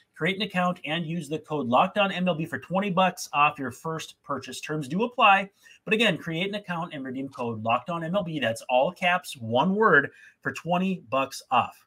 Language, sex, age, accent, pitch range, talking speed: English, male, 30-49, American, 125-180 Hz, 190 wpm